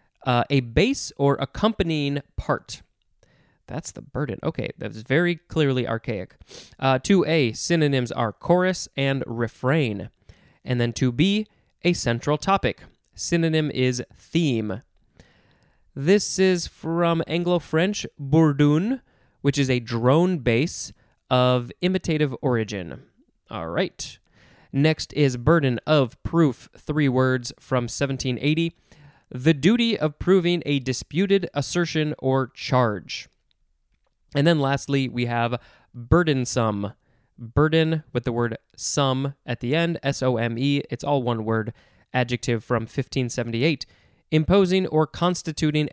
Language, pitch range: English, 120-160 Hz